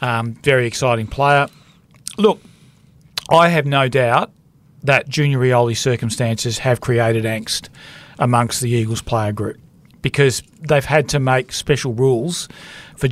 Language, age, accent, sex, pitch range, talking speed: English, 40-59, Australian, male, 120-145 Hz, 135 wpm